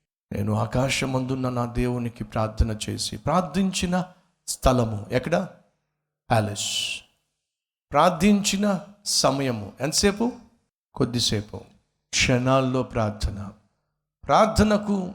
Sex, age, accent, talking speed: male, 50-69, native, 55 wpm